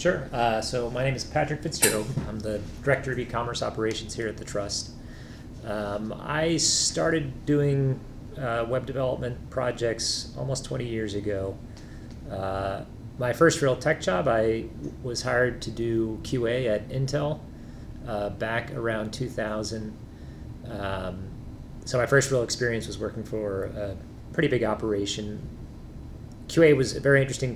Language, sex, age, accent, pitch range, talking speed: English, male, 30-49, American, 110-130 Hz, 145 wpm